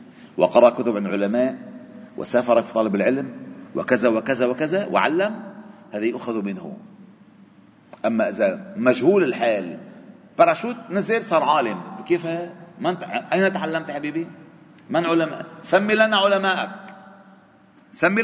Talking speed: 110 wpm